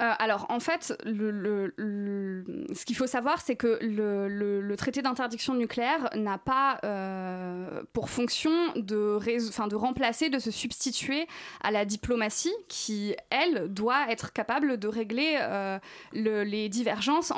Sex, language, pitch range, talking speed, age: female, French, 210-265 Hz, 135 wpm, 20-39